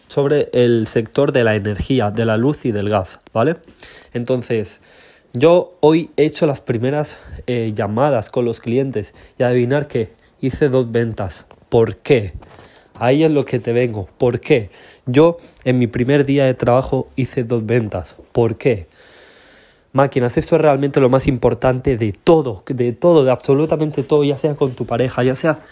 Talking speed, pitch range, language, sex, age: 175 wpm, 120-150 Hz, Spanish, male, 20-39